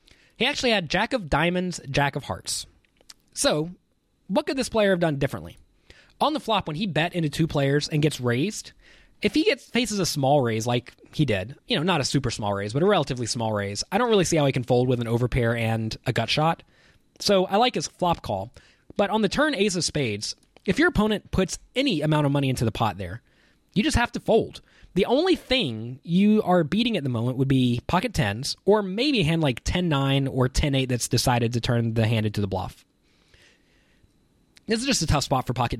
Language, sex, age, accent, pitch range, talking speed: English, male, 20-39, American, 115-180 Hz, 225 wpm